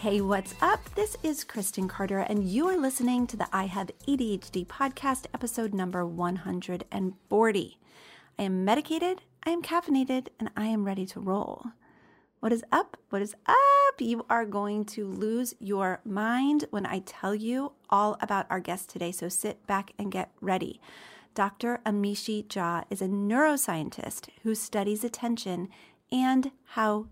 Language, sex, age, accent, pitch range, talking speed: English, female, 40-59, American, 195-245 Hz, 155 wpm